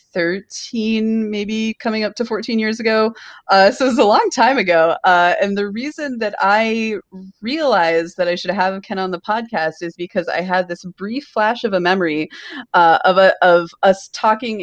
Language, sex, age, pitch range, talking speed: English, female, 30-49, 185-260 Hz, 195 wpm